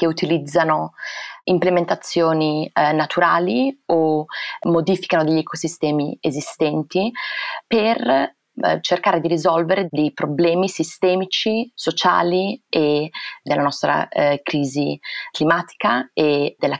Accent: native